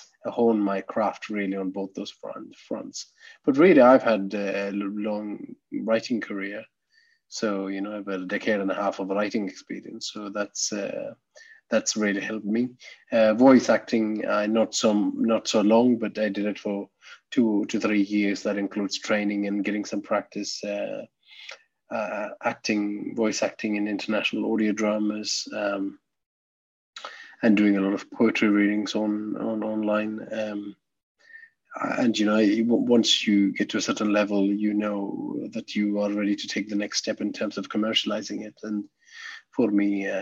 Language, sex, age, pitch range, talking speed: English, male, 30-49, 100-110 Hz, 170 wpm